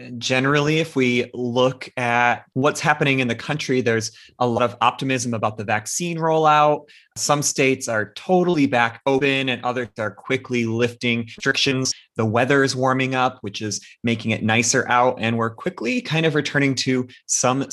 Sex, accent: male, American